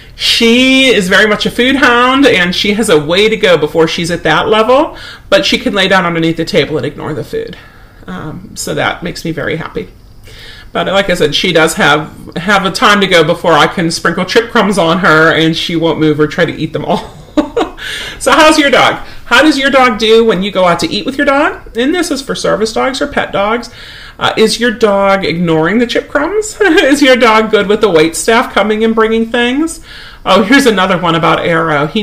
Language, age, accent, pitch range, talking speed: English, 40-59, American, 160-230 Hz, 230 wpm